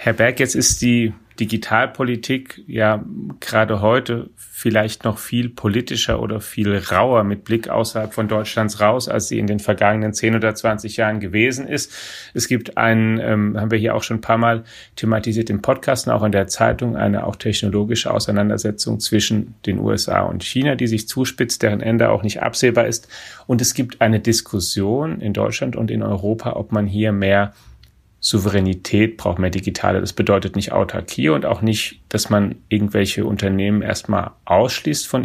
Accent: German